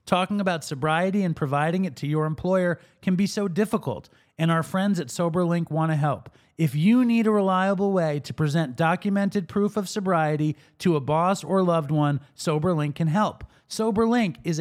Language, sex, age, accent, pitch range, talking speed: English, male, 30-49, American, 145-195 Hz, 180 wpm